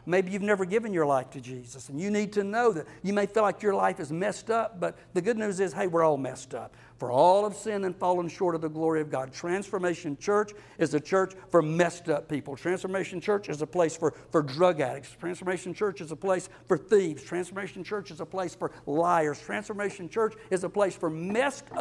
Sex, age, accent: male, 60-79, American